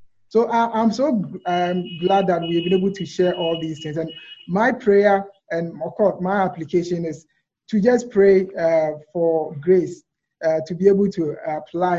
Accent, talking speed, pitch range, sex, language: Nigerian, 180 wpm, 165-195 Hz, male, English